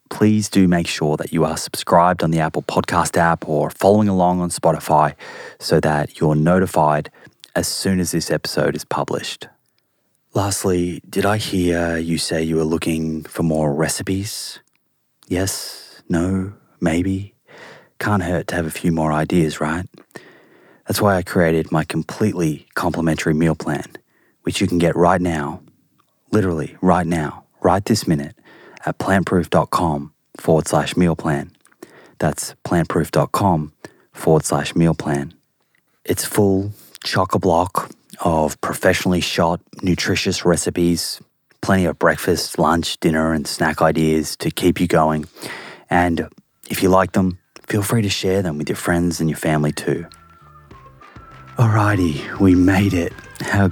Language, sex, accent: English, male, Australian